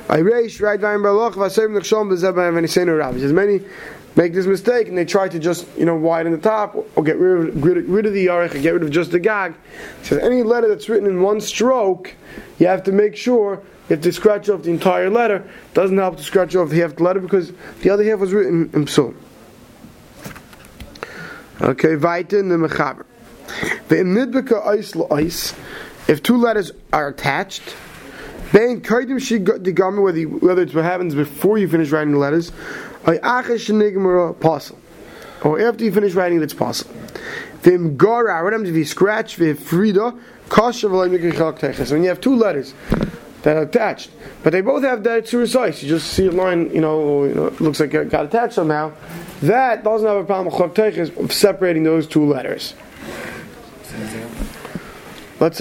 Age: 30-49